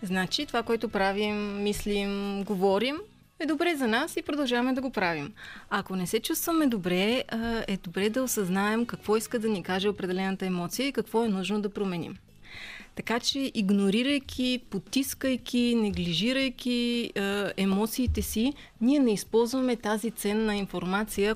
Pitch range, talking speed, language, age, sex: 190-235 Hz, 145 wpm, Bulgarian, 30-49, female